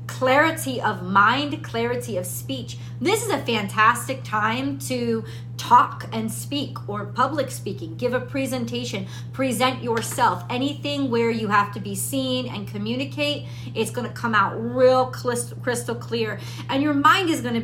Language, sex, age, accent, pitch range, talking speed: English, female, 40-59, American, 120-140 Hz, 150 wpm